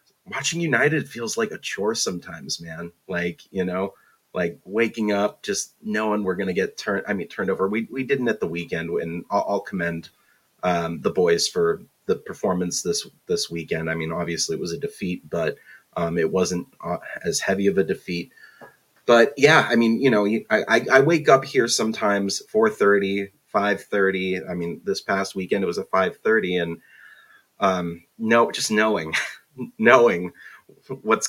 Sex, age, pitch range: male, 30-49, 90-135 Hz